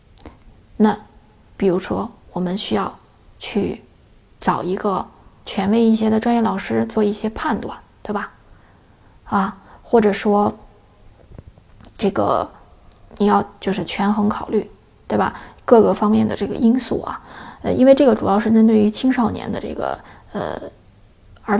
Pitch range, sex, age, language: 205-235 Hz, female, 20-39, Chinese